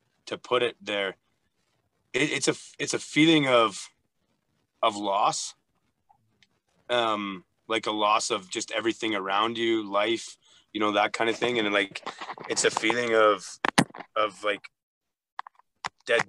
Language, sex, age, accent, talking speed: English, male, 30-49, American, 135 wpm